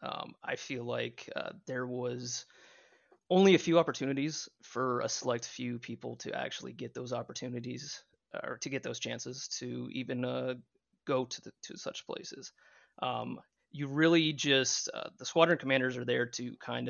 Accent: American